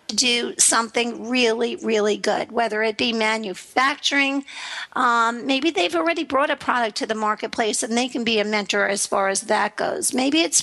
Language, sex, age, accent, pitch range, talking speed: English, female, 50-69, American, 225-310 Hz, 180 wpm